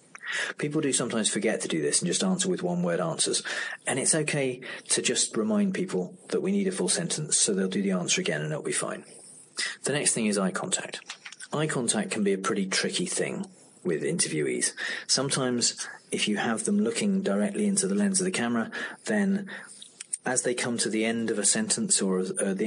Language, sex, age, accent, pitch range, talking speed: English, male, 40-59, British, 170-205 Hz, 205 wpm